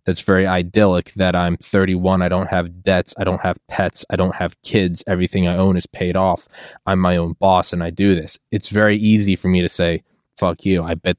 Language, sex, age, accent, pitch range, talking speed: English, male, 20-39, American, 90-125 Hz, 230 wpm